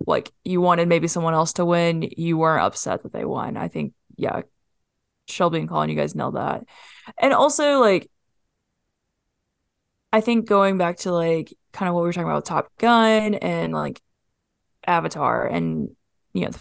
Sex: female